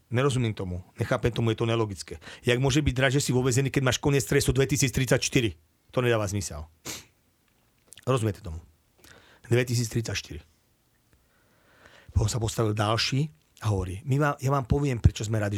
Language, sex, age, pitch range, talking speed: Slovak, male, 40-59, 105-135 Hz, 150 wpm